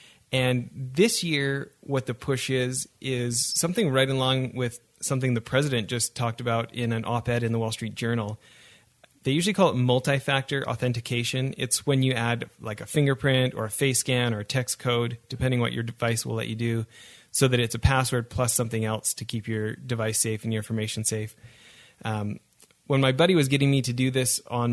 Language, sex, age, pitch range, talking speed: English, male, 30-49, 110-130 Hz, 200 wpm